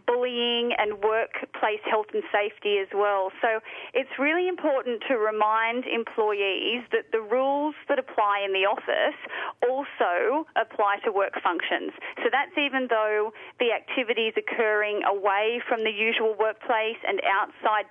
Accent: Australian